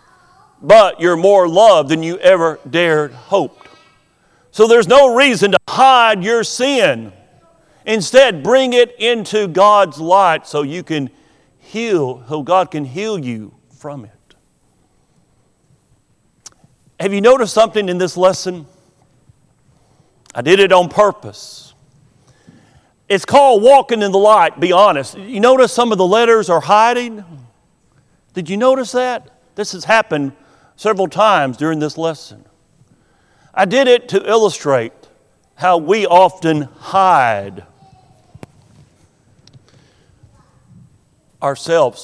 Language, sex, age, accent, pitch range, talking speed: English, male, 40-59, American, 140-205 Hz, 120 wpm